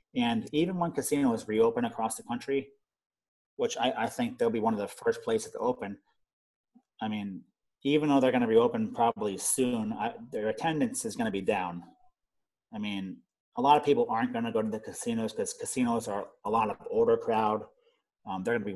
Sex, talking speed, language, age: male, 210 wpm, English, 30-49